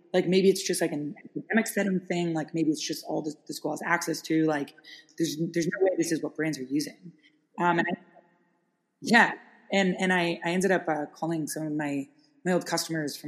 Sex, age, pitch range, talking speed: female, 20-39, 150-175 Hz, 220 wpm